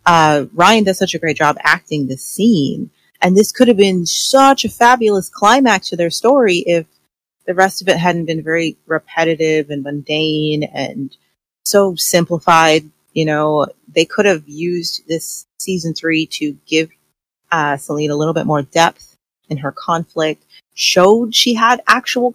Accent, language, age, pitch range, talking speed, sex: American, English, 30-49, 160-215 Hz, 165 wpm, female